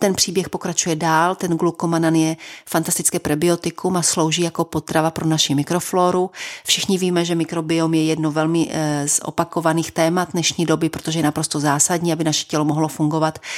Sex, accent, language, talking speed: female, native, Czech, 165 wpm